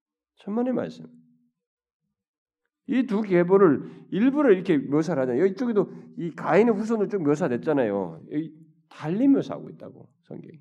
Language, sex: Korean, male